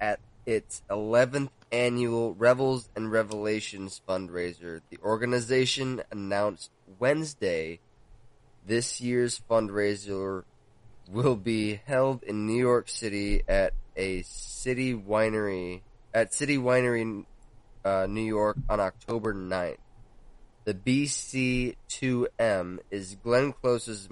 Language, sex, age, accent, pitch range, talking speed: English, male, 20-39, American, 100-120 Hz, 100 wpm